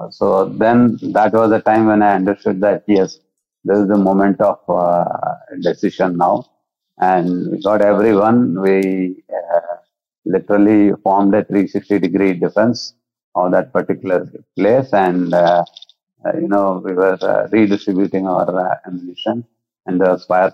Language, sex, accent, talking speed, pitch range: Hindi, male, native, 145 wpm, 95-110 Hz